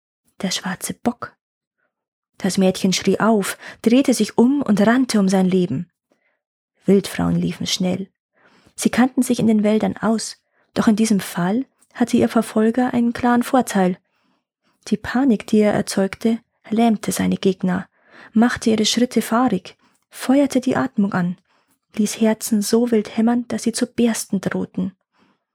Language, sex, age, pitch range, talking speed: German, female, 20-39, 195-235 Hz, 145 wpm